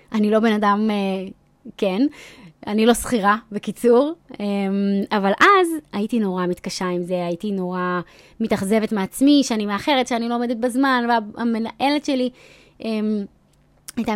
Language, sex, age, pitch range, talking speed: Hebrew, female, 20-39, 195-275 Hz, 125 wpm